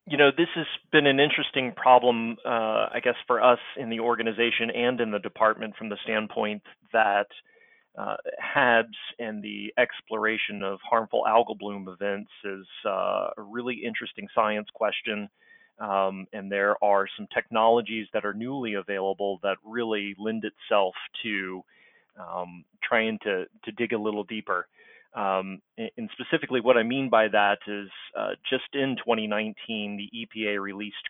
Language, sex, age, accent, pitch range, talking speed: English, male, 30-49, American, 105-120 Hz, 155 wpm